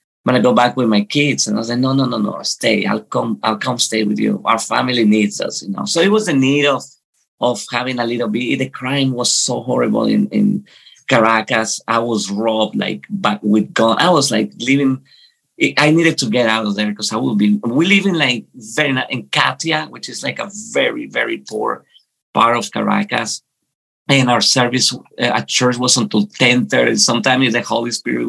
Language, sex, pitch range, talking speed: English, male, 110-145 Hz, 210 wpm